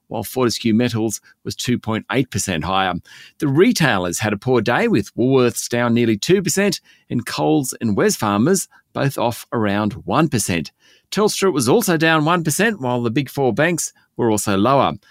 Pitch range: 115-155 Hz